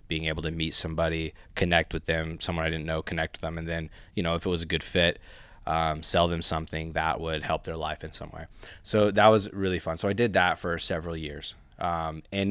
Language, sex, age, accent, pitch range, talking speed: English, male, 20-39, American, 80-95 Hz, 245 wpm